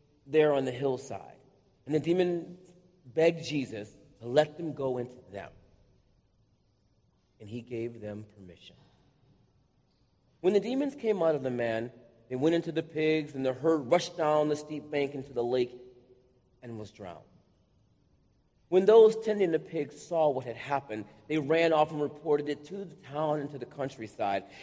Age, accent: 40-59, American